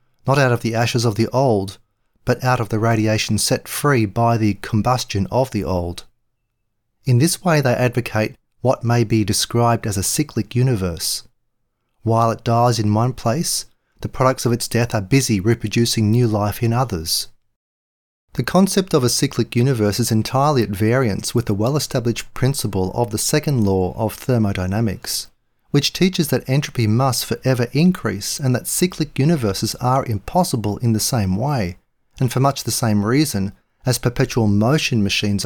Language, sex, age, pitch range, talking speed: English, male, 40-59, 105-130 Hz, 170 wpm